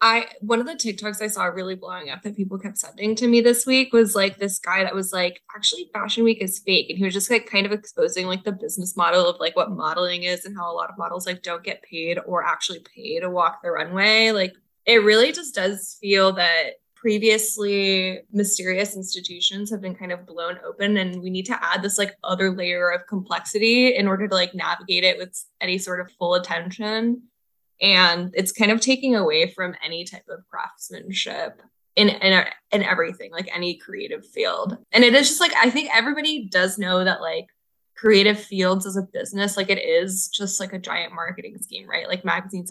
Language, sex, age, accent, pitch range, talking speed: English, female, 10-29, American, 185-225 Hz, 210 wpm